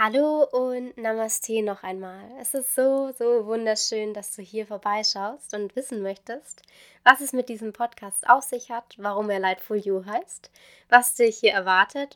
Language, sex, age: German, female, 20-39